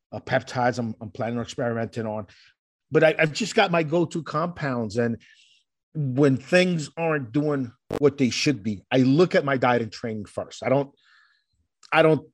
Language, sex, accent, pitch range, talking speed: English, male, American, 125-155 Hz, 180 wpm